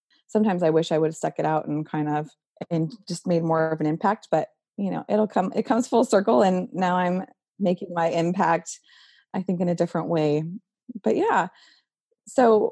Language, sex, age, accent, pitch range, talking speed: English, female, 20-39, American, 160-205 Hz, 205 wpm